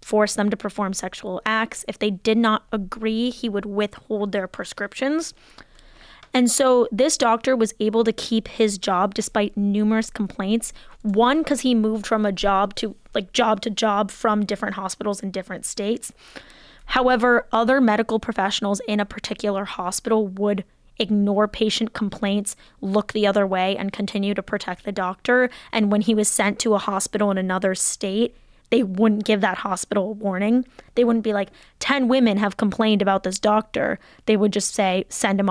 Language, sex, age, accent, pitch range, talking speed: English, female, 10-29, American, 200-225 Hz, 175 wpm